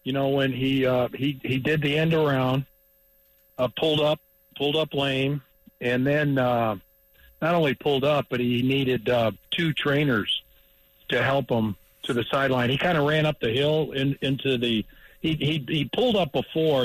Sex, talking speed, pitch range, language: male, 185 wpm, 125-150 Hz, English